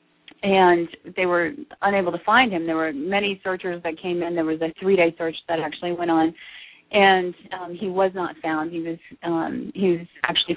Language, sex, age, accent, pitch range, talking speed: English, female, 30-49, American, 170-210 Hz, 200 wpm